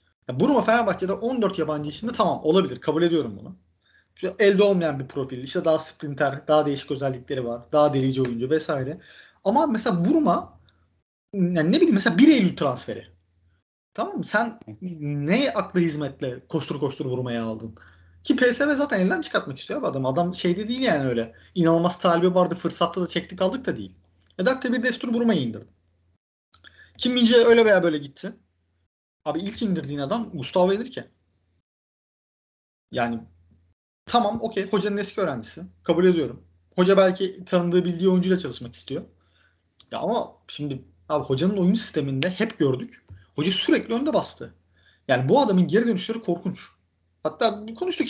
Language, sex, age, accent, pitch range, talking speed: Turkish, male, 30-49, native, 125-200 Hz, 150 wpm